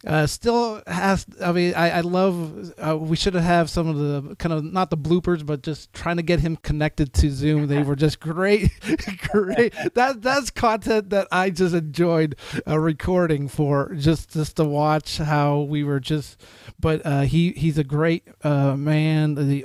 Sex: male